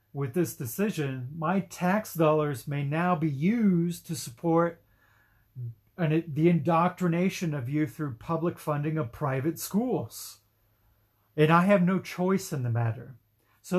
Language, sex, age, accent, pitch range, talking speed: English, male, 40-59, American, 115-170 Hz, 135 wpm